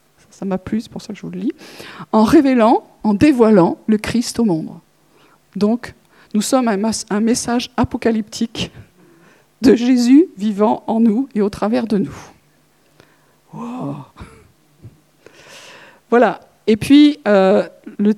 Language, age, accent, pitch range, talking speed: French, 50-69, French, 220-275 Hz, 130 wpm